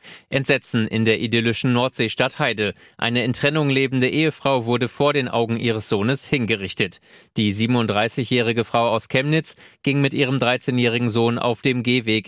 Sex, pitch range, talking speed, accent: male, 110-135 Hz, 150 wpm, German